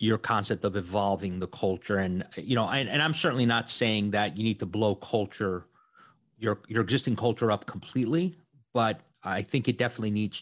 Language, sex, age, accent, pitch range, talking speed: English, male, 30-49, American, 105-130 Hz, 190 wpm